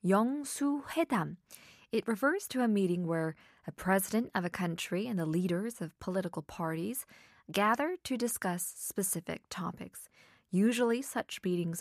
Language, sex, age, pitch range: Korean, female, 20-39, 175-265 Hz